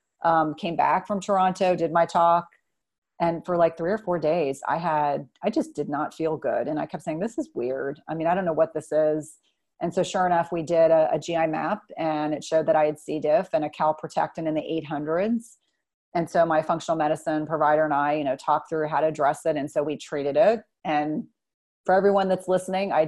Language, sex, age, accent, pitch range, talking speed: English, female, 30-49, American, 155-185 Hz, 230 wpm